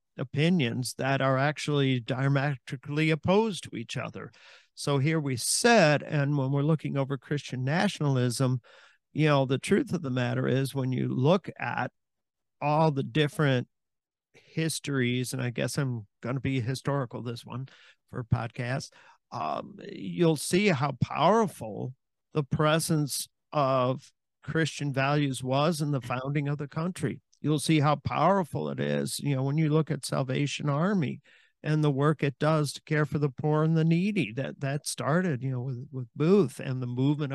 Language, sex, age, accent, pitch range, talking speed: English, male, 50-69, American, 130-155 Hz, 165 wpm